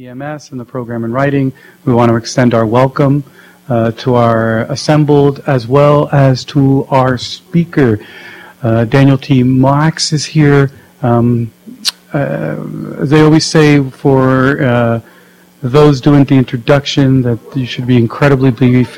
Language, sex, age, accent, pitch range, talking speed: English, male, 40-59, American, 120-145 Hz, 140 wpm